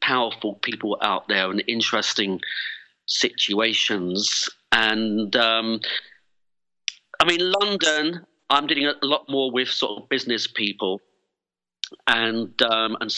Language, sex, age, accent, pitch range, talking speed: English, male, 40-59, British, 110-130 Hz, 115 wpm